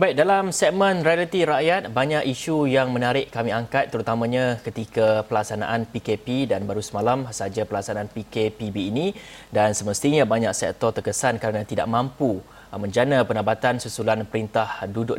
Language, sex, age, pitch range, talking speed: Malay, male, 30-49, 115-140 Hz, 140 wpm